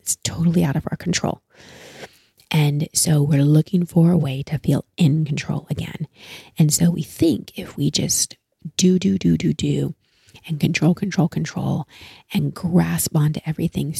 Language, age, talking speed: English, 30-49, 165 wpm